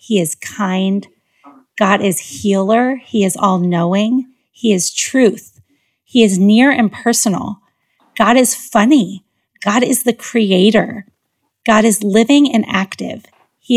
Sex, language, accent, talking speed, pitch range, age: female, English, American, 135 wpm, 195-240 Hz, 30-49